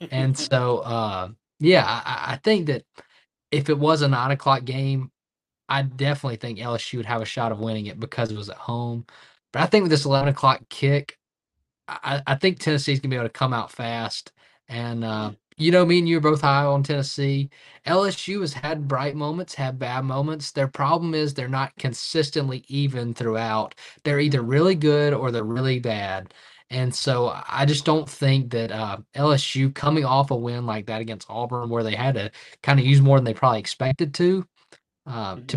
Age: 20-39